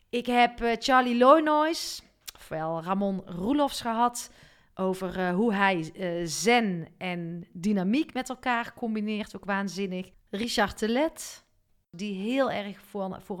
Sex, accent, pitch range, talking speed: female, Dutch, 190-235 Hz, 110 wpm